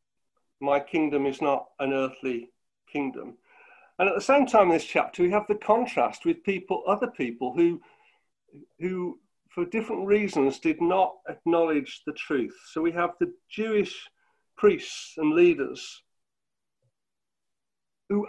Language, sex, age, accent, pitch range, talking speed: English, male, 50-69, British, 150-235 Hz, 140 wpm